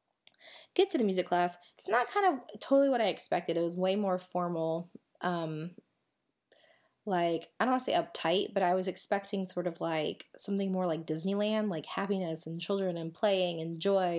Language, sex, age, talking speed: English, female, 20-39, 190 wpm